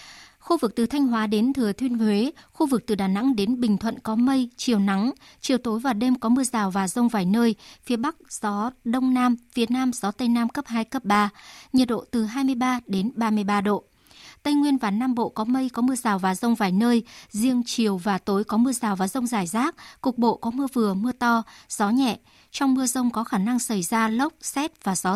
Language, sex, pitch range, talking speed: Vietnamese, male, 210-255 Hz, 235 wpm